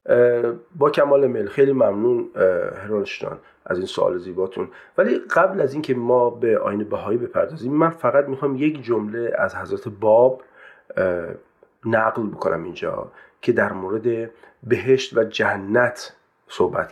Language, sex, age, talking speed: Persian, male, 40-59, 130 wpm